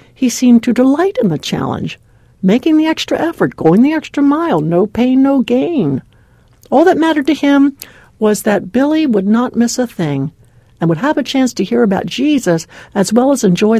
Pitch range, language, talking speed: 160-250 Hz, English, 195 wpm